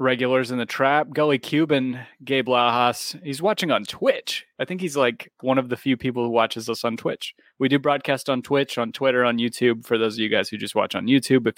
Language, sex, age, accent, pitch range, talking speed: English, male, 20-39, American, 110-140 Hz, 240 wpm